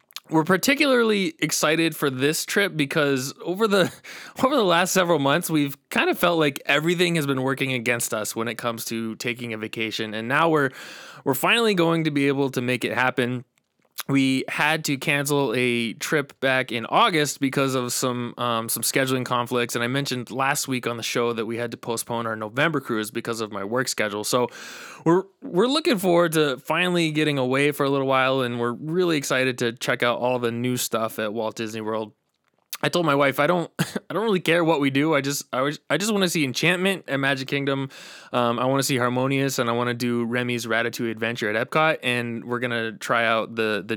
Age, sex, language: 20-39, male, English